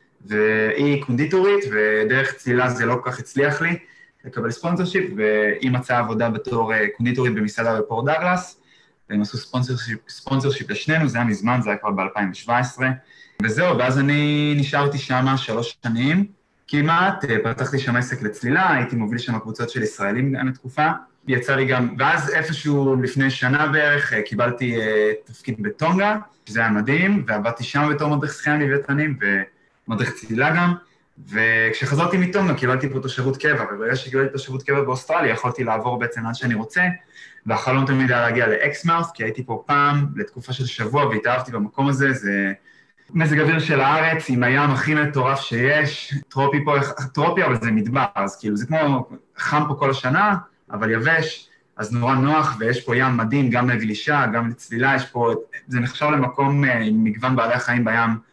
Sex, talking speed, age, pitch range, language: male, 160 wpm, 20-39, 115-150 Hz, Hebrew